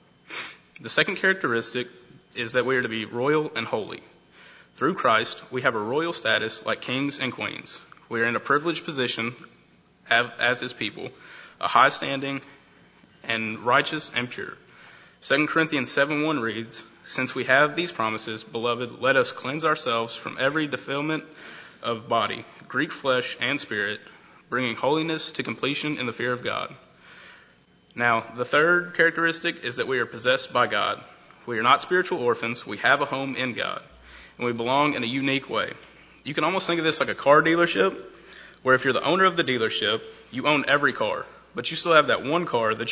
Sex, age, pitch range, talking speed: male, 20-39, 115-155 Hz, 180 wpm